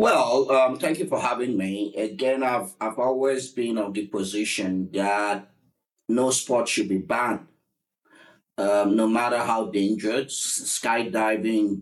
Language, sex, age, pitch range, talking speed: English, male, 50-69, 105-135 Hz, 135 wpm